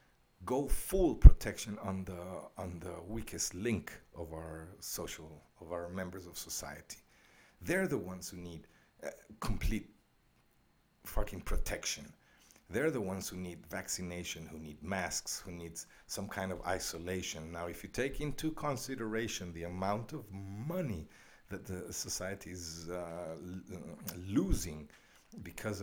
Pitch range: 85-110 Hz